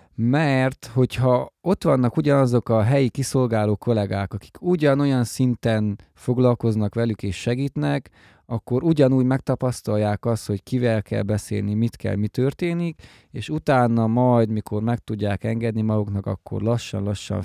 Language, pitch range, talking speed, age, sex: Hungarian, 105-125 Hz, 130 wpm, 20-39, male